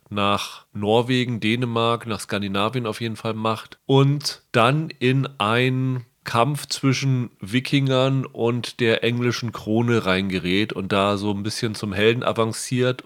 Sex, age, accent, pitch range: male, 30-49, German, 110-125 Hz